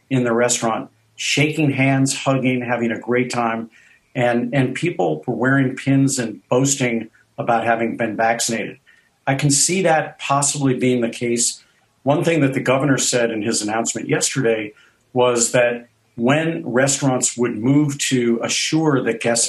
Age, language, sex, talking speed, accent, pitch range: 50-69, English, male, 155 wpm, American, 115-140 Hz